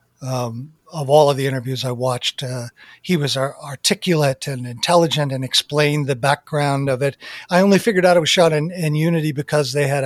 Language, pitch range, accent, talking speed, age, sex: English, 130-175 Hz, American, 195 wpm, 50-69, male